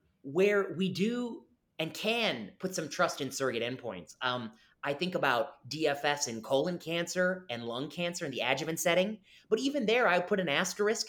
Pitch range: 135-190 Hz